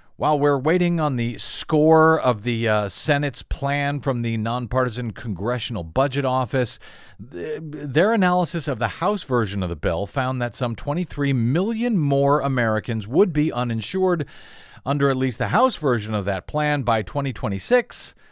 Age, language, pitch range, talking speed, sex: 50-69, English, 115-160 Hz, 155 wpm, male